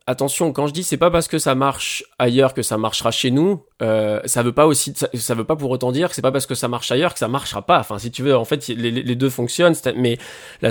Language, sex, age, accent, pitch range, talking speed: French, male, 20-39, French, 110-140 Hz, 290 wpm